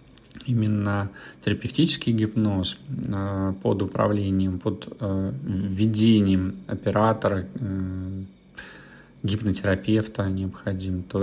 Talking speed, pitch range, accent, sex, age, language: 60 wpm, 95-115 Hz, native, male, 30-49, Russian